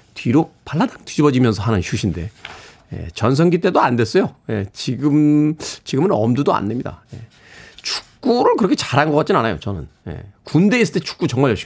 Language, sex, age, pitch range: Korean, male, 40-59, 120-190 Hz